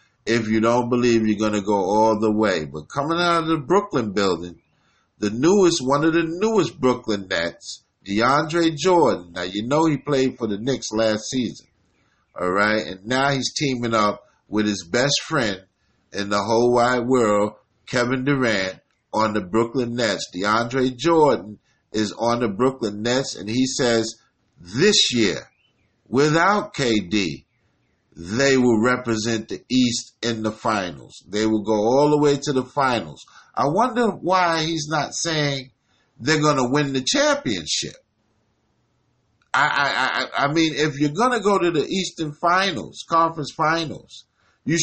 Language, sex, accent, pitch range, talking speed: English, male, American, 110-160 Hz, 160 wpm